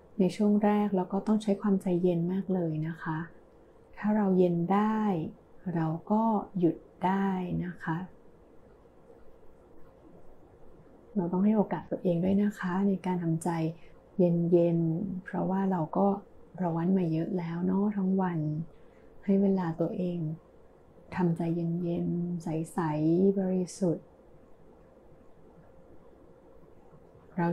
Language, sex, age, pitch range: Thai, female, 20-39, 175-205 Hz